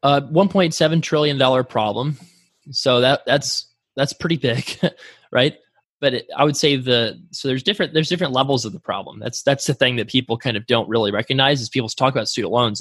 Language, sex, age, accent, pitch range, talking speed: English, male, 20-39, American, 115-140 Hz, 200 wpm